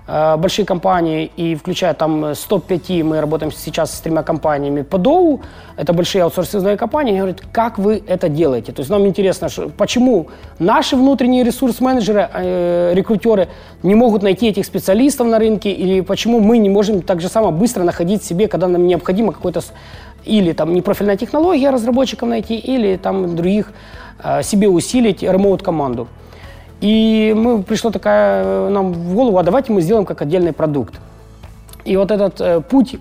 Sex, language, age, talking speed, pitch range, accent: male, Russian, 20-39, 160 wpm, 170-220 Hz, native